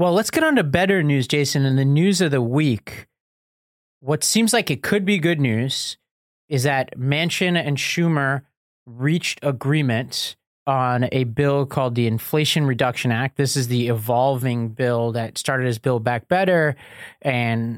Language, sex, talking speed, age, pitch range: English, male, 165 wpm, 30-49, 125-150 Hz